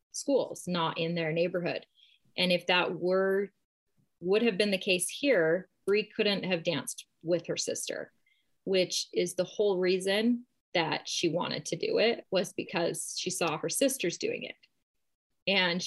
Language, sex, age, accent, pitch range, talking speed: English, female, 20-39, American, 175-205 Hz, 160 wpm